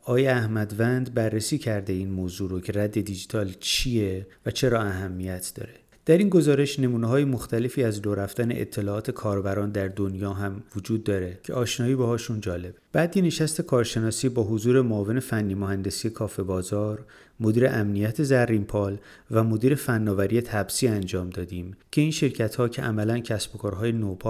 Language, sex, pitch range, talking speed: Persian, male, 105-130 Hz, 165 wpm